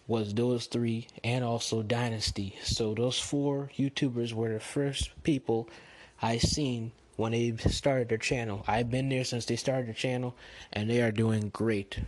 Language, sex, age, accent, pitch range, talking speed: English, male, 20-39, American, 110-125 Hz, 170 wpm